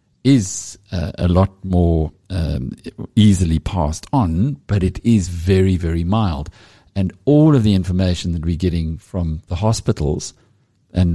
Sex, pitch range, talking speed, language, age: male, 85-105 Hz, 145 wpm, English, 50-69